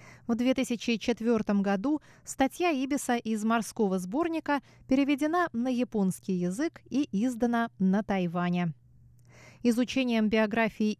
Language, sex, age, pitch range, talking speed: Russian, female, 20-39, 185-245 Hz, 100 wpm